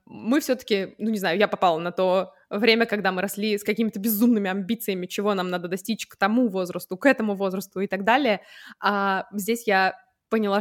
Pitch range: 190-235 Hz